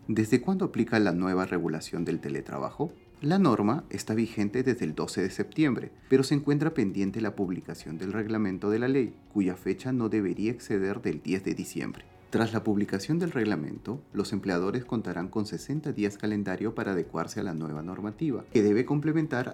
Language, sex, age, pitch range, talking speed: Spanish, male, 30-49, 95-130 Hz, 180 wpm